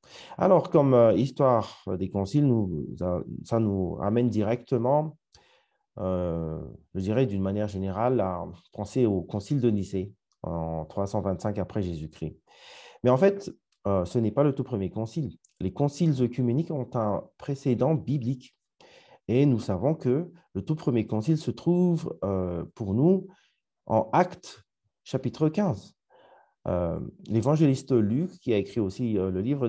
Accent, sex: French, male